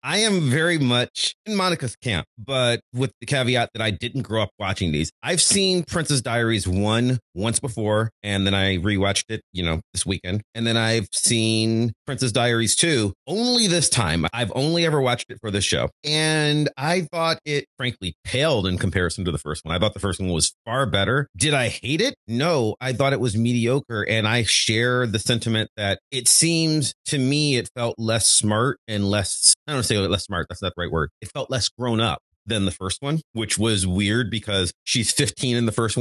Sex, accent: male, American